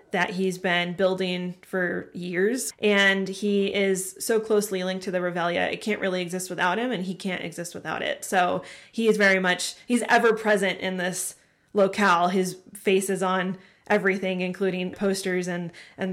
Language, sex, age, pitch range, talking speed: English, female, 20-39, 180-210 Hz, 175 wpm